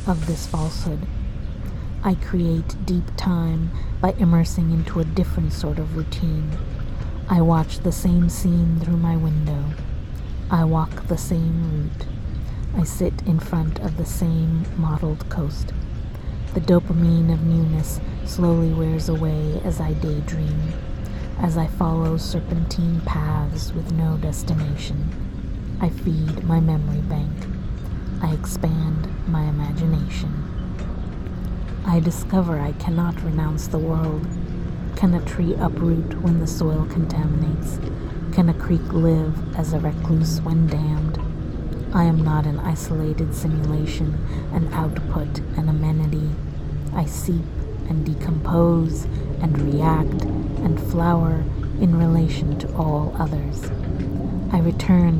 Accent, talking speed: American, 125 wpm